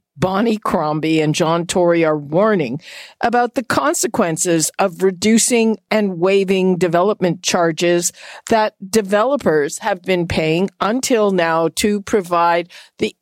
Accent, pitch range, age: American, 170-225 Hz, 50-69